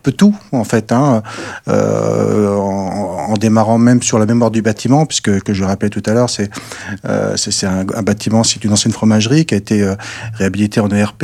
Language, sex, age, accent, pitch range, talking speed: French, male, 40-59, French, 100-120 Hz, 210 wpm